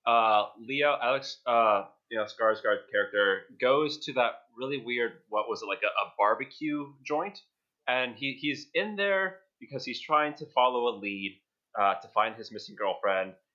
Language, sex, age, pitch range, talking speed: English, male, 30-49, 110-170 Hz, 175 wpm